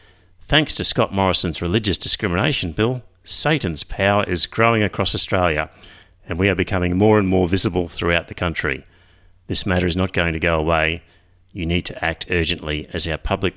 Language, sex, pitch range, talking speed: English, male, 80-100 Hz, 175 wpm